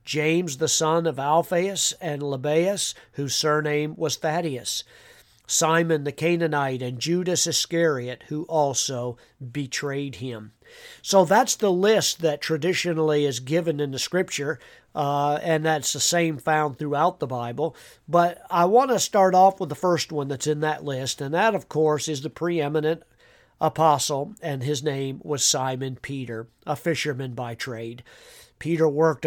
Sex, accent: male, American